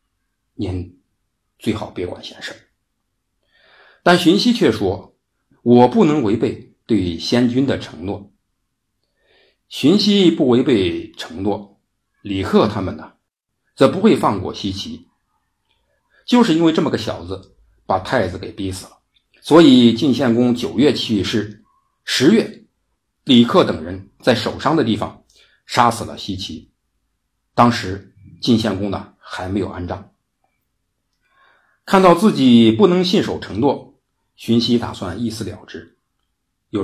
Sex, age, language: male, 50-69, Chinese